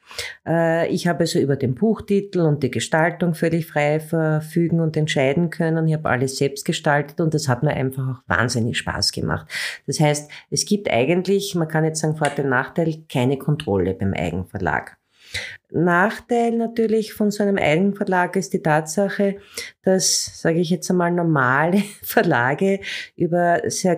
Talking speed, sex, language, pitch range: 160 wpm, female, German, 150-185 Hz